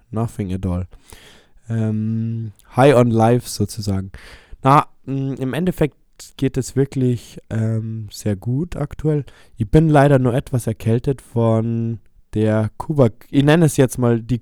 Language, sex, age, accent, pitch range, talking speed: German, male, 20-39, German, 95-120 Hz, 140 wpm